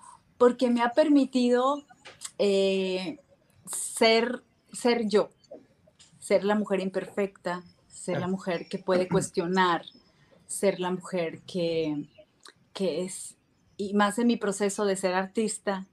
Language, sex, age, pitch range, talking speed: Hebrew, female, 30-49, 185-210 Hz, 120 wpm